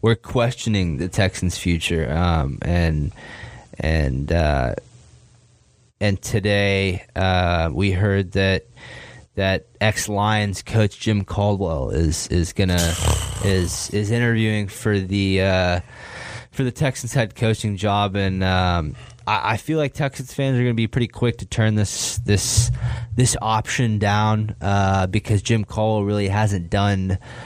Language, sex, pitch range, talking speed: English, male, 95-110 Hz, 140 wpm